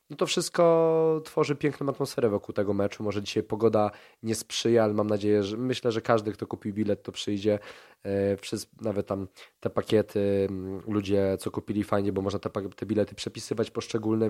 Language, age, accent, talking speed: Polish, 20-39, native, 185 wpm